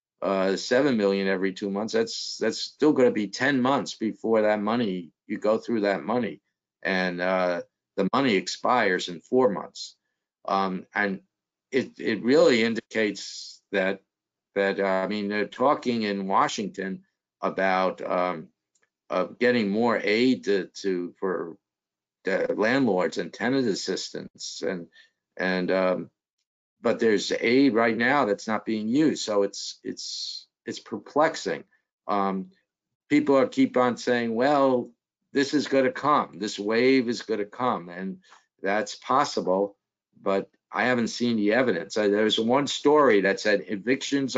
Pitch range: 95-125 Hz